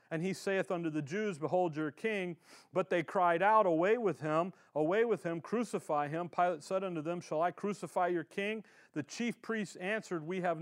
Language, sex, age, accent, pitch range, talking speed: English, male, 40-59, American, 150-195 Hz, 205 wpm